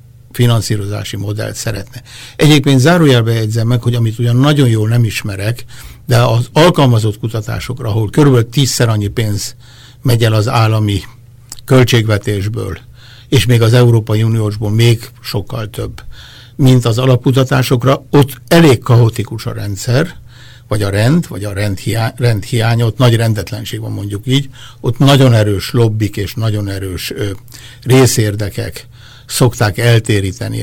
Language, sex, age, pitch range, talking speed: Hungarian, male, 60-79, 110-130 Hz, 135 wpm